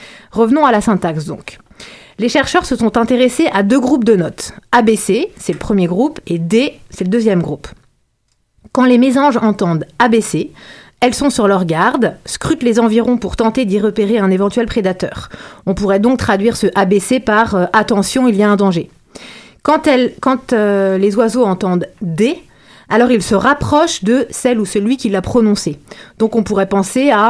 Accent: French